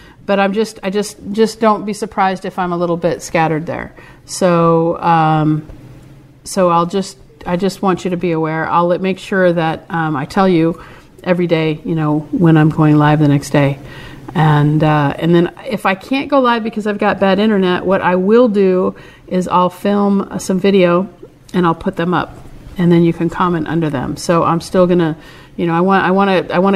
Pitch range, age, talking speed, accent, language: 165-195 Hz, 40-59, 215 wpm, American, English